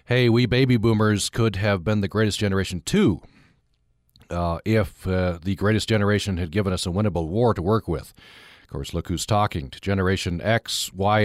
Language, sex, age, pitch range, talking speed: English, male, 40-59, 90-115 Hz, 185 wpm